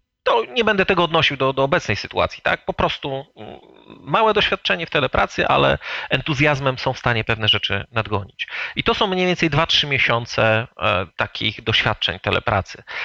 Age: 40-59